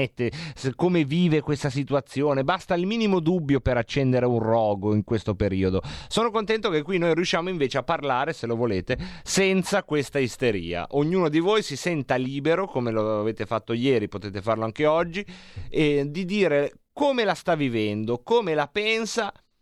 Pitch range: 130-180 Hz